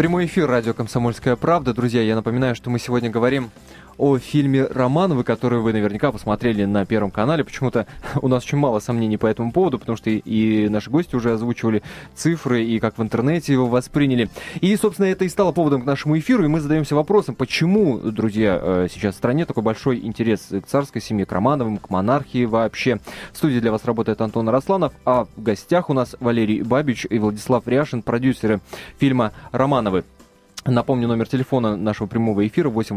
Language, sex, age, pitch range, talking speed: Russian, male, 20-39, 105-135 Hz, 185 wpm